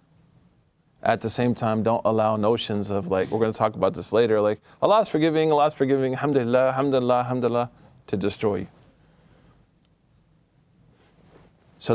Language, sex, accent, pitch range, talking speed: English, male, American, 105-130 Hz, 145 wpm